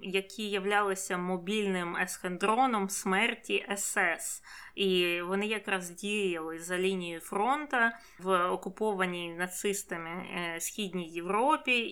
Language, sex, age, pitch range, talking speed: Ukrainian, female, 20-39, 185-210 Hz, 95 wpm